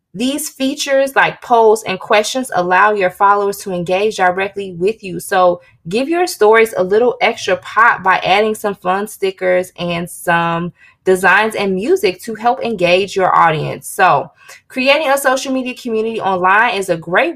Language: English